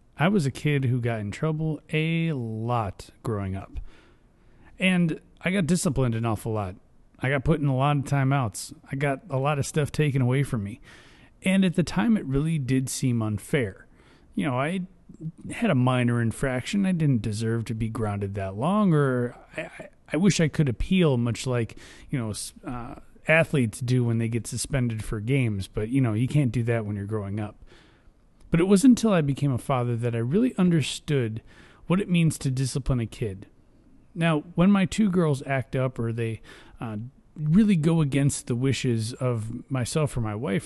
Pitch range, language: 115-160 Hz, English